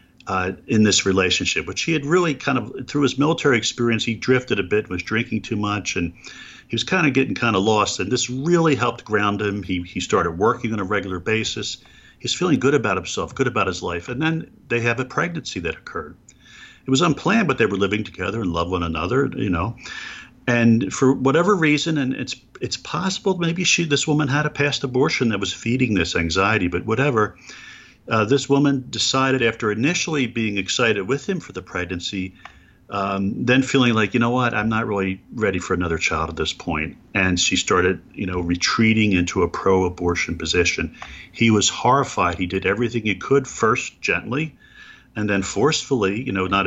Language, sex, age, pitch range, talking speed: English, male, 50-69, 100-135 Hz, 200 wpm